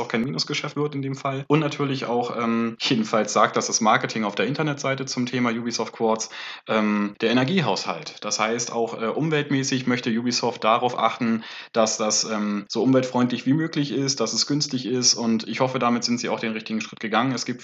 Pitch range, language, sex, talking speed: 110-135 Hz, German, male, 205 wpm